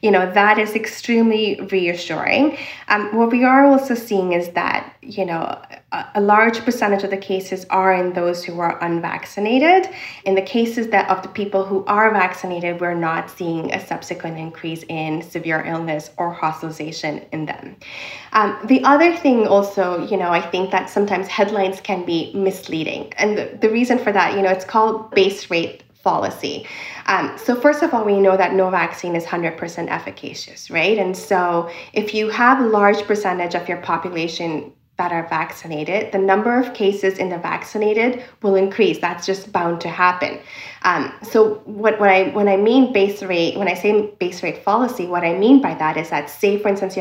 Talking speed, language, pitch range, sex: 190 wpm, English, 175-215 Hz, female